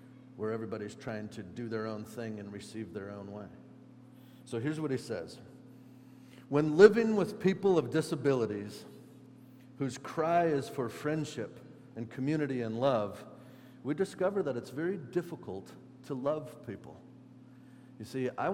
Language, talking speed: English, 145 wpm